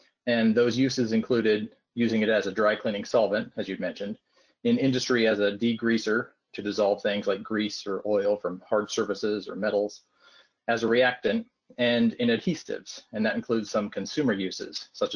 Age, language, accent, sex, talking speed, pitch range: 40-59, English, American, male, 175 wpm, 105-130 Hz